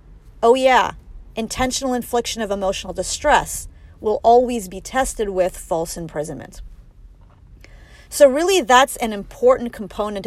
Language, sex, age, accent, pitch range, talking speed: English, female, 40-59, American, 180-250 Hz, 115 wpm